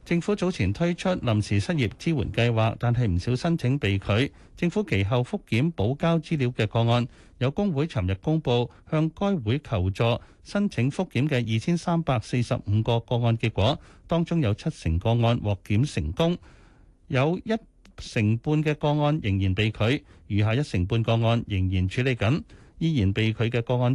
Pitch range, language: 100-145 Hz, Chinese